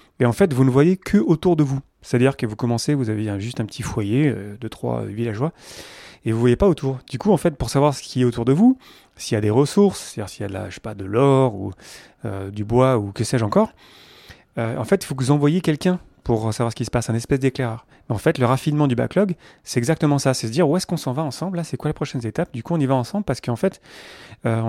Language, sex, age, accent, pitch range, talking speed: French, male, 30-49, French, 115-145 Hz, 290 wpm